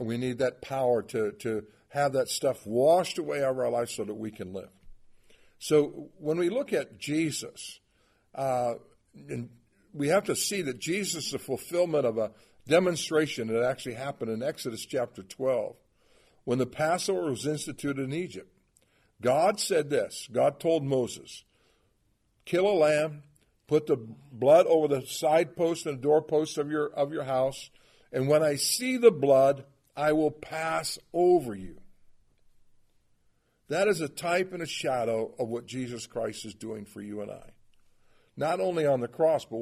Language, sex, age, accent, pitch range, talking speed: English, male, 60-79, American, 125-160 Hz, 170 wpm